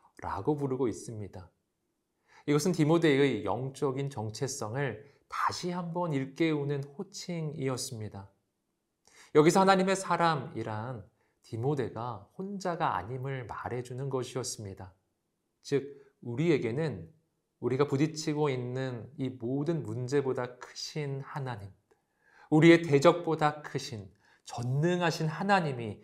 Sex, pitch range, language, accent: male, 115-160 Hz, Korean, native